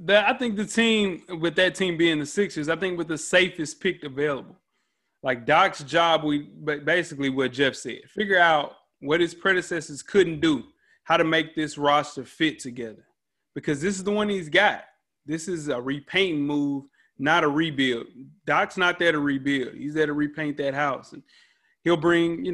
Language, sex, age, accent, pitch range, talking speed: English, male, 30-49, American, 145-175 Hz, 190 wpm